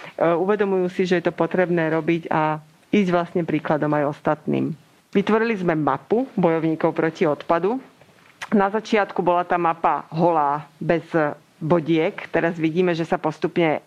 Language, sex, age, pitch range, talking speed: Slovak, female, 40-59, 155-180 Hz, 140 wpm